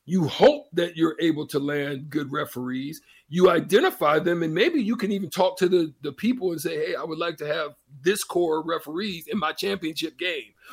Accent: American